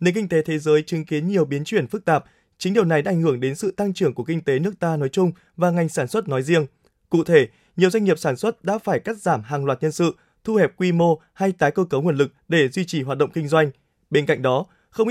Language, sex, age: Vietnamese, male, 20-39